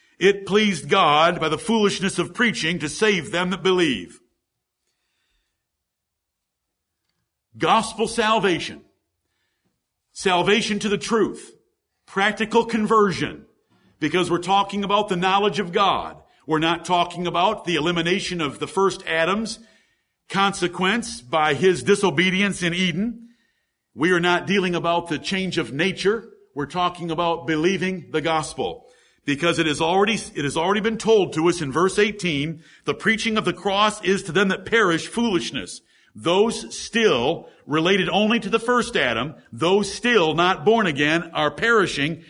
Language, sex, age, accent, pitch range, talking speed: English, male, 50-69, American, 170-215 Hz, 140 wpm